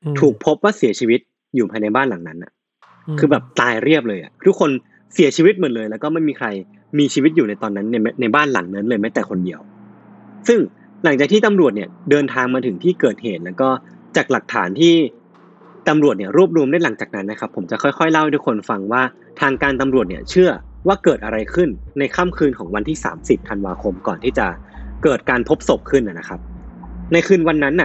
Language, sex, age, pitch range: Thai, male, 20-39, 105-155 Hz